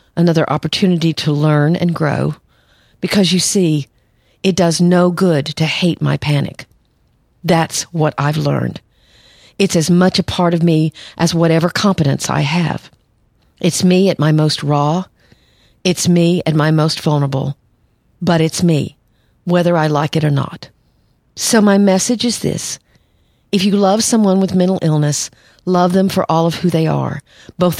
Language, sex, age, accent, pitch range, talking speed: English, female, 50-69, American, 150-185 Hz, 160 wpm